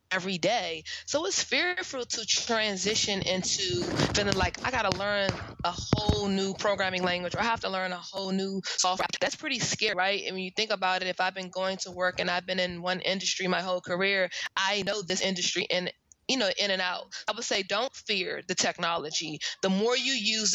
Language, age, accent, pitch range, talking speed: English, 20-39, American, 185-220 Hz, 215 wpm